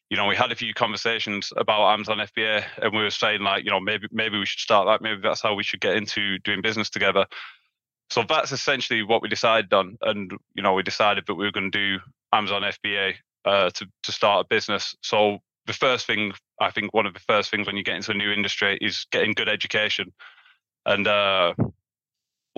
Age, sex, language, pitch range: 20-39, male, English, 100-110 Hz